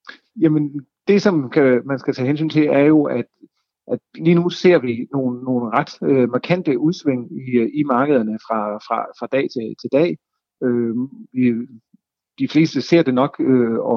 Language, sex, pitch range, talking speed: Danish, male, 120-150 Hz, 175 wpm